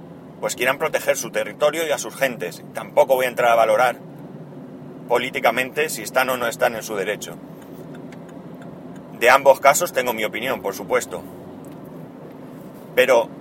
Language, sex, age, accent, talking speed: Spanish, male, 30-49, Spanish, 150 wpm